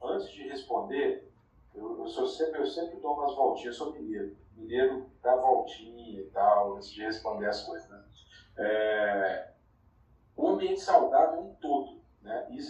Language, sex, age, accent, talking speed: Portuguese, male, 50-69, Brazilian, 170 wpm